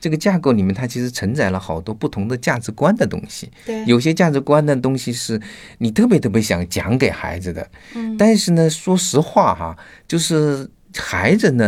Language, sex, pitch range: Chinese, male, 95-155 Hz